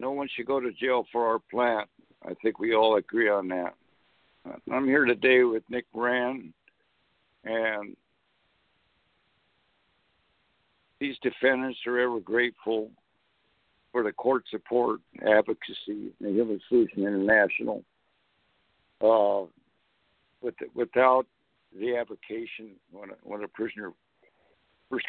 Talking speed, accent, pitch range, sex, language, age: 120 wpm, American, 110-125 Hz, male, English, 60-79